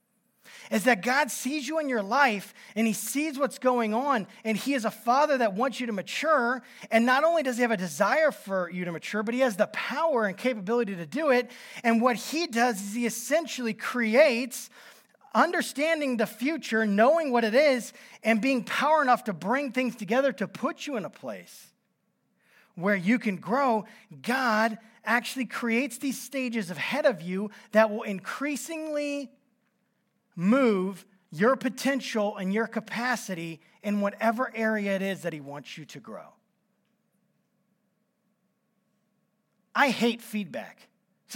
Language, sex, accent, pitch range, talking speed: English, male, American, 210-260 Hz, 160 wpm